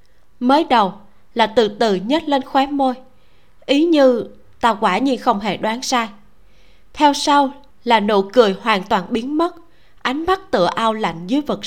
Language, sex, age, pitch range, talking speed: Vietnamese, female, 20-39, 200-265 Hz, 175 wpm